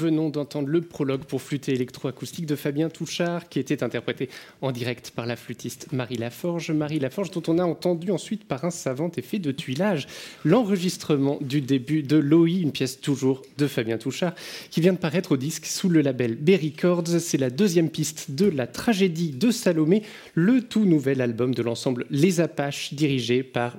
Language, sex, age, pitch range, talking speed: French, male, 20-39, 135-180 Hz, 185 wpm